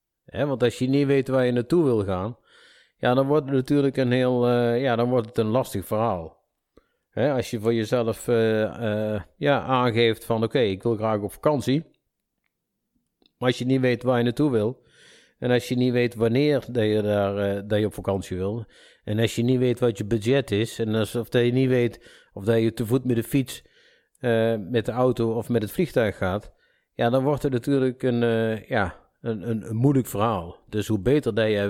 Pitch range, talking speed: 105-125 Hz, 220 wpm